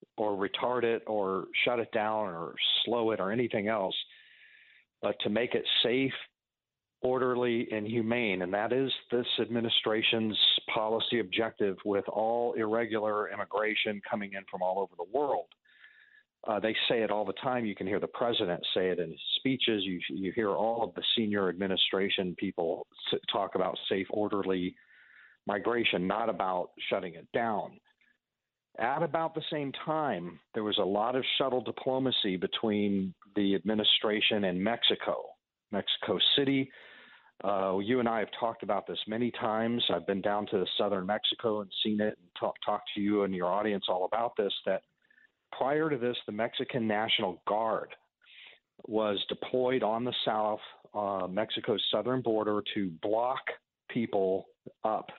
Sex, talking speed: male, 155 wpm